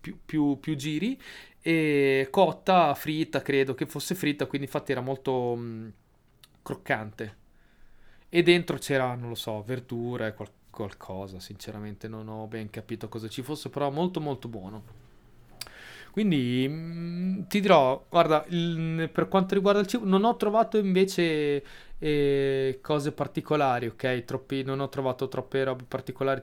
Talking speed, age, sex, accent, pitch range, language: 140 wpm, 30-49, male, native, 130-160 Hz, Italian